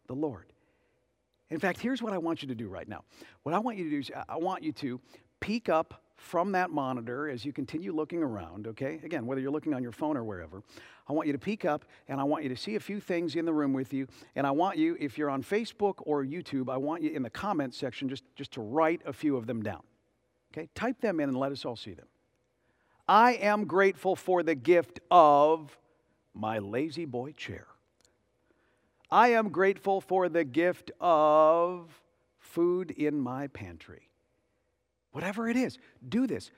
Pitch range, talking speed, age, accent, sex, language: 125-185 Hz, 210 wpm, 50-69, American, male, English